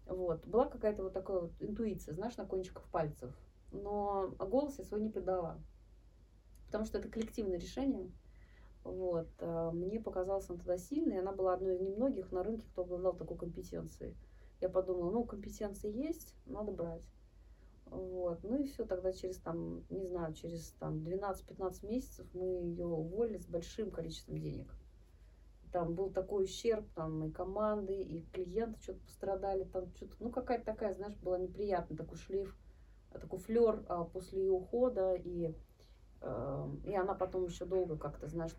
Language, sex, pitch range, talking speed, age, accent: Russian, female, 165-205 Hz, 155 wpm, 30-49, native